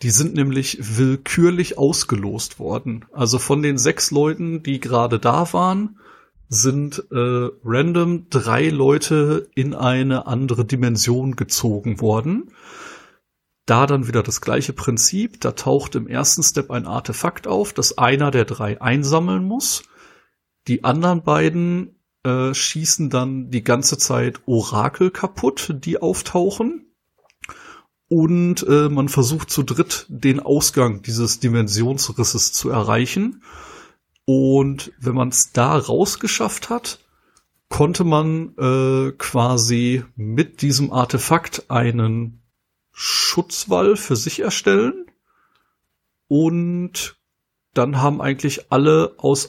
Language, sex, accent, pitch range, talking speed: German, male, German, 120-160 Hz, 115 wpm